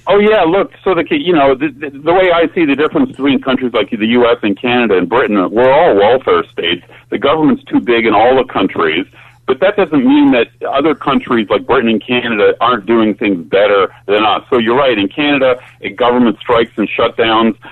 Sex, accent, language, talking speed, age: male, American, English, 205 wpm, 50-69